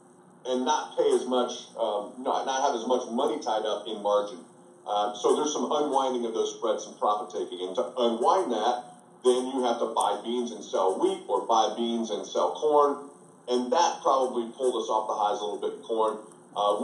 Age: 30-49